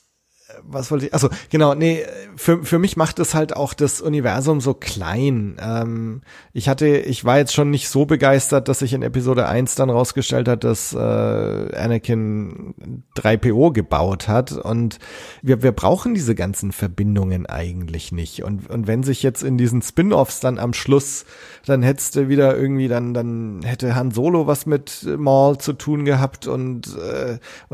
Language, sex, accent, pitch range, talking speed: German, male, German, 115-145 Hz, 170 wpm